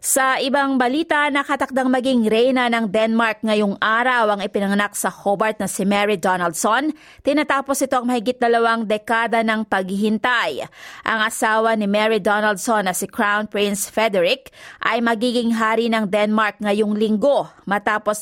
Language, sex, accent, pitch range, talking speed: Filipino, female, native, 210-255 Hz, 145 wpm